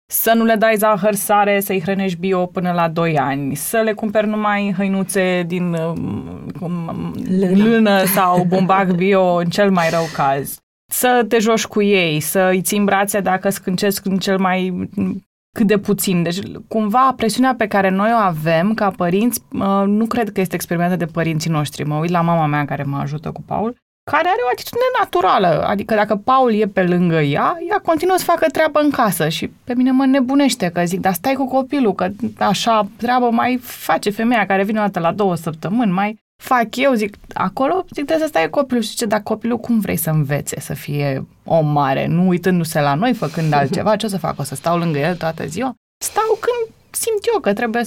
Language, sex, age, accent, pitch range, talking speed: Romanian, female, 20-39, native, 175-230 Hz, 205 wpm